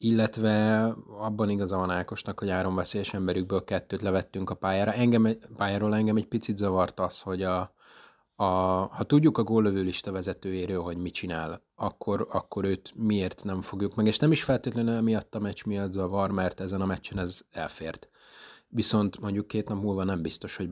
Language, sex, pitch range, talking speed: Hungarian, male, 90-110 Hz, 170 wpm